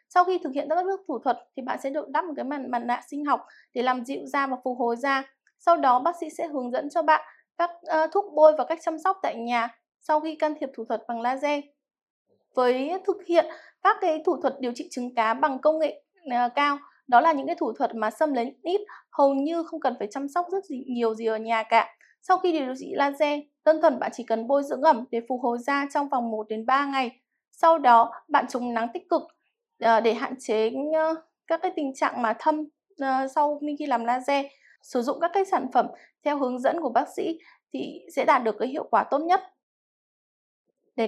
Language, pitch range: Vietnamese, 250-315 Hz